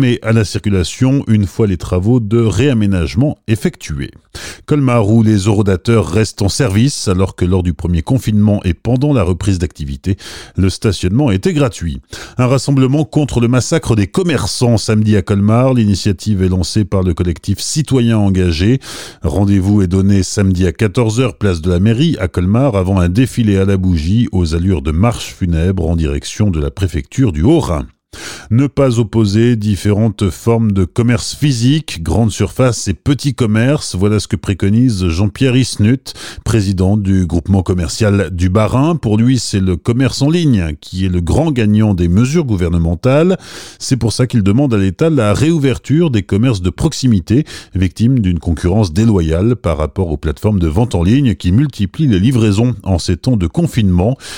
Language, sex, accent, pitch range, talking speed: French, male, French, 95-120 Hz, 170 wpm